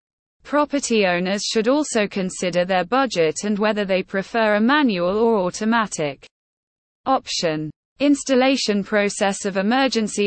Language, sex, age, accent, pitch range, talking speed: English, female, 20-39, British, 180-245 Hz, 115 wpm